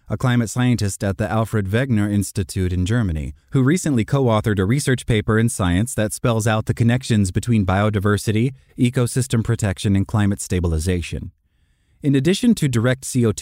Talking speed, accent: 155 wpm, American